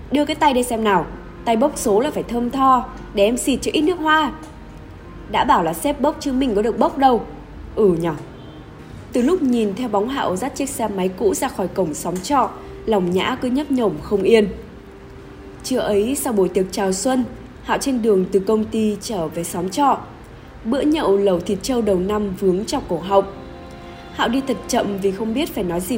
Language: Vietnamese